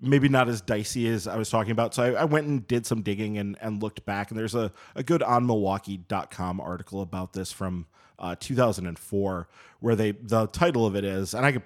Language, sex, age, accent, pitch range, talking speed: English, male, 30-49, American, 100-120 Hz, 225 wpm